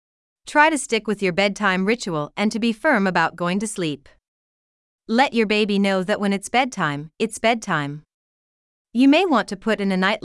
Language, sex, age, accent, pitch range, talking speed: English, female, 40-59, American, 180-230 Hz, 195 wpm